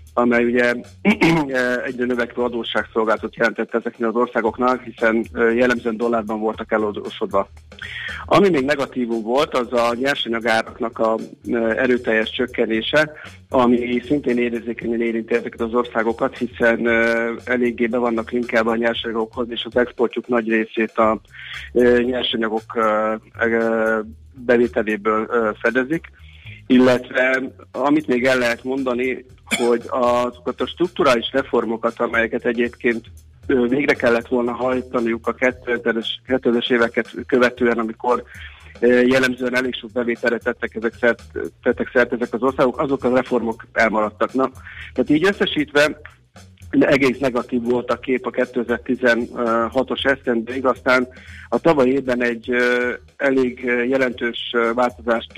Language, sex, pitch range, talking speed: Hungarian, male, 115-125 Hz, 110 wpm